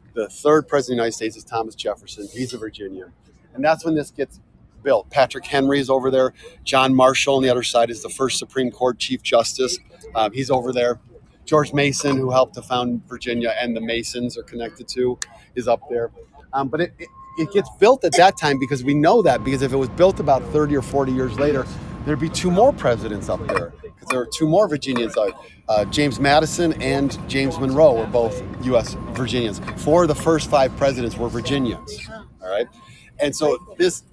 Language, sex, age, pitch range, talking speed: English, male, 40-59, 120-155 Hz, 205 wpm